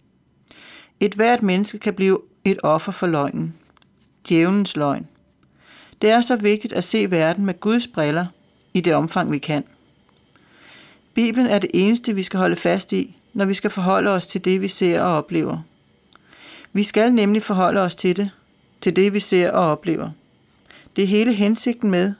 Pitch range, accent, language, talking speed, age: 175-210 Hz, native, Danish, 175 wpm, 40-59